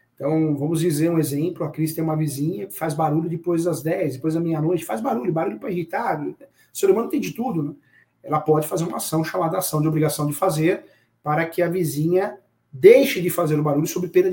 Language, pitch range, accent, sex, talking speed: Portuguese, 150-180 Hz, Brazilian, male, 220 wpm